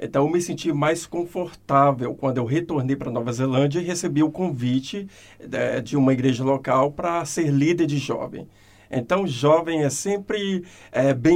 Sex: male